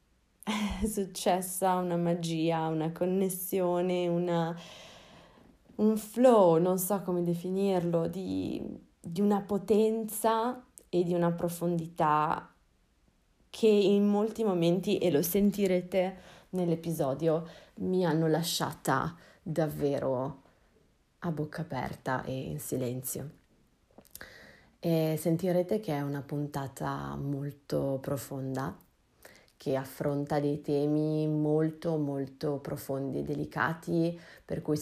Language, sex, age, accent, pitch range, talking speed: Italian, female, 30-49, native, 145-180 Hz, 95 wpm